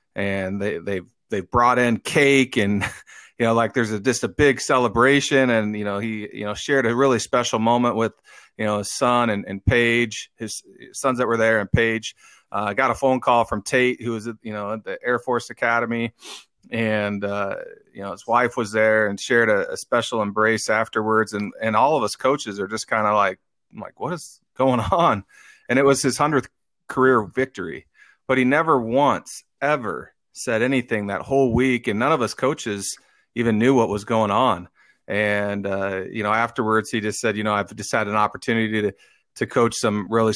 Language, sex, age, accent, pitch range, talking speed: English, male, 30-49, American, 105-120 Hz, 210 wpm